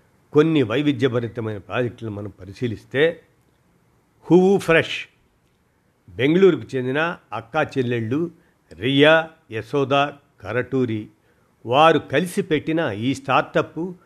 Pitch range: 110-155 Hz